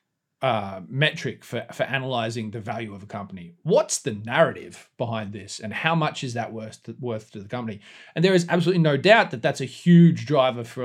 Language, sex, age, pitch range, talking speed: English, male, 30-49, 115-160 Hz, 210 wpm